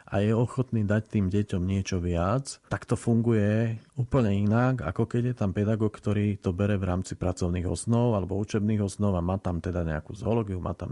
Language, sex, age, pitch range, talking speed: Slovak, male, 40-59, 105-120 Hz, 200 wpm